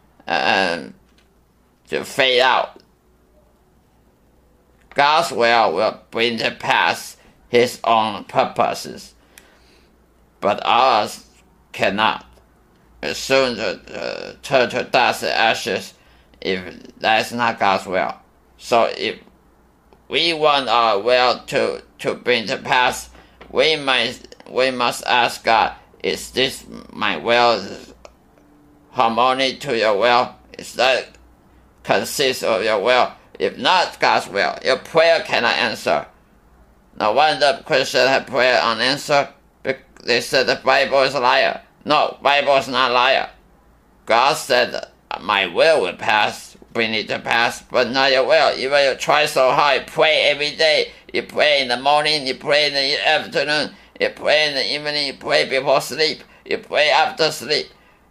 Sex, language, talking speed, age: male, English, 140 wpm, 50-69